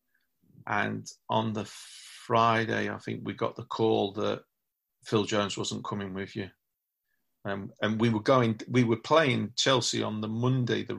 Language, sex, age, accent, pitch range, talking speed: English, male, 40-59, British, 105-115 Hz, 160 wpm